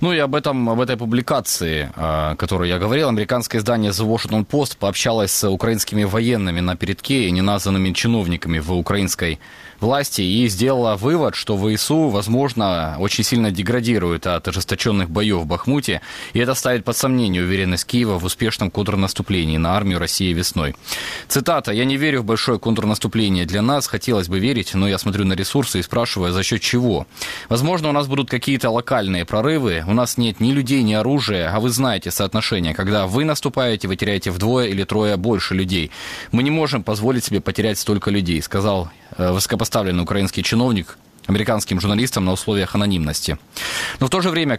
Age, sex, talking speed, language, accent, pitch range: 20-39, male, 175 wpm, Ukrainian, native, 95-120 Hz